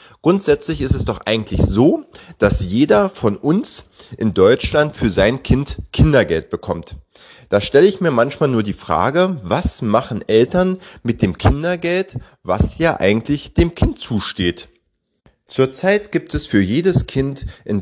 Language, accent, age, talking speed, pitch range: German, German, 30-49, 150 wpm, 100-145 Hz